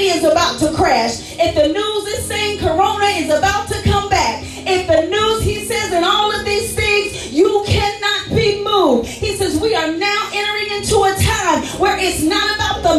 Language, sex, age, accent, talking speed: English, female, 40-59, American, 200 wpm